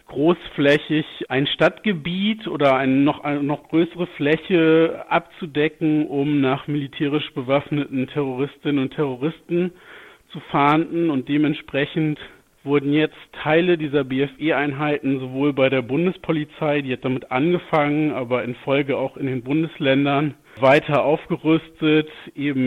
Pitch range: 135-160 Hz